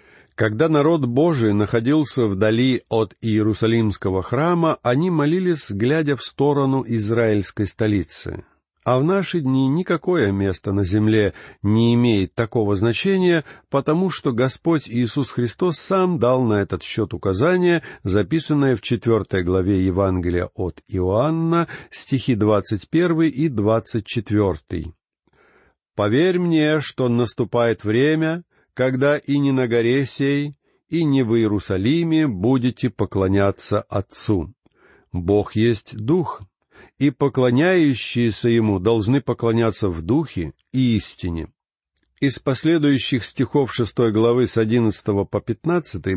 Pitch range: 105-145 Hz